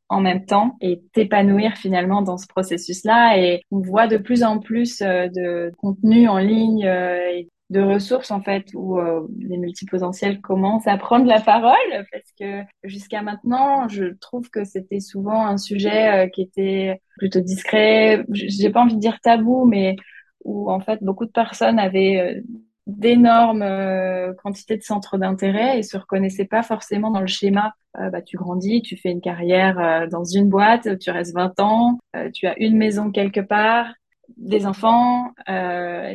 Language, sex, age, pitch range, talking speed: French, female, 20-39, 185-220 Hz, 170 wpm